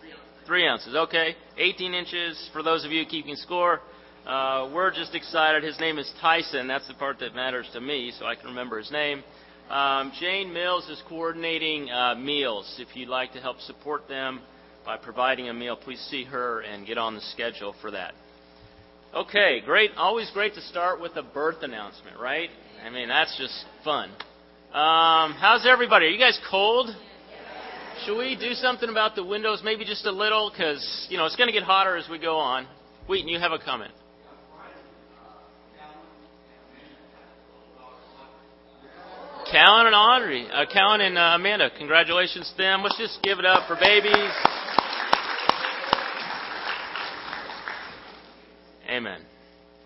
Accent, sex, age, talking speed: American, male, 40-59, 155 wpm